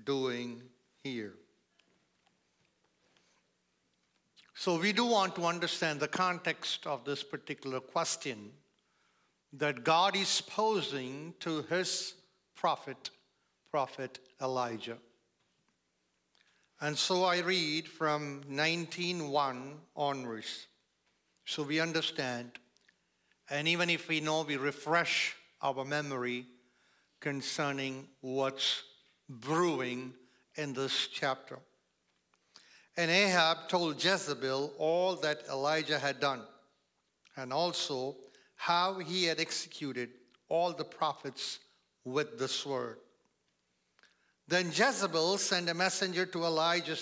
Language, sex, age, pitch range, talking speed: English, male, 50-69, 135-175 Hz, 95 wpm